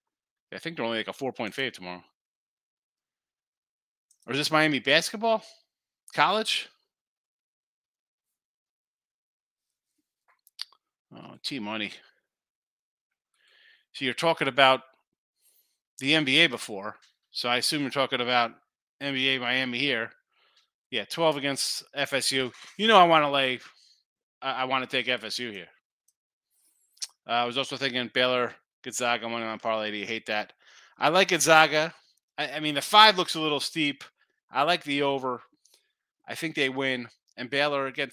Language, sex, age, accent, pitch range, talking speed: English, male, 30-49, American, 120-155 Hz, 140 wpm